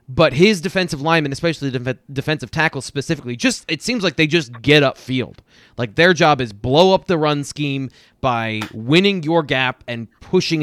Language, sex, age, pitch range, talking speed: English, male, 20-39, 120-155 Hz, 185 wpm